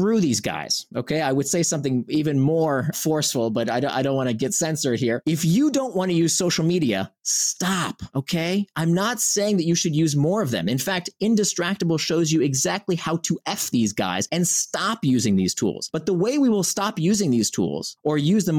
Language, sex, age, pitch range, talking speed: English, male, 30-49, 140-200 Hz, 215 wpm